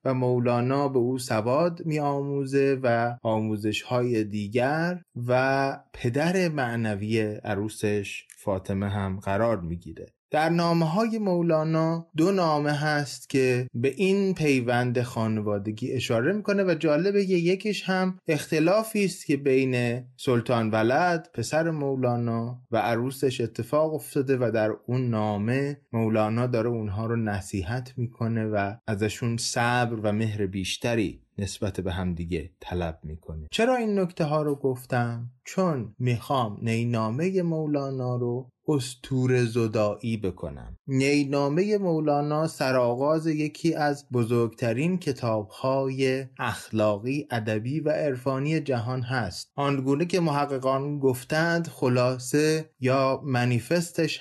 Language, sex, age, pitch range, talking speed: Persian, male, 20-39, 115-150 Hz, 115 wpm